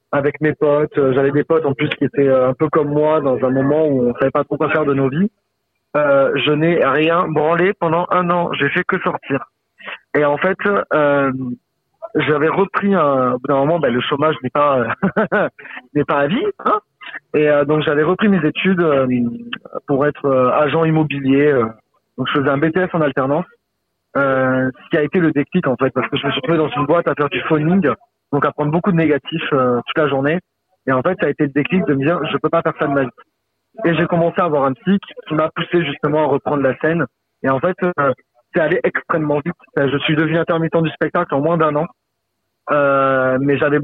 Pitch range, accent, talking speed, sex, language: 140-165 Hz, French, 230 wpm, male, French